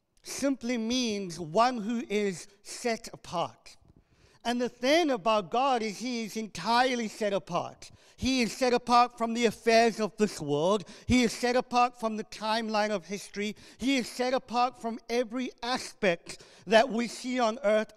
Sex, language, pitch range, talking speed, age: male, English, 205-255 Hz, 165 wpm, 50-69